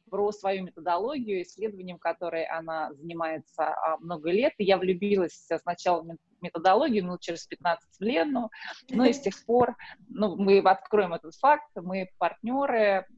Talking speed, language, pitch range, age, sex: 140 wpm, Russian, 180-225 Hz, 20-39, female